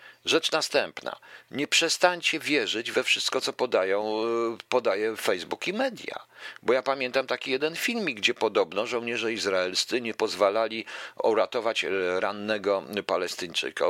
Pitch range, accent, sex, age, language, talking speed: 125-195 Hz, native, male, 50-69, Polish, 115 wpm